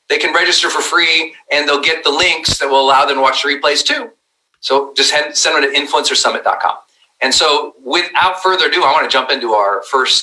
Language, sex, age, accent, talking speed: English, male, 40-59, American, 215 wpm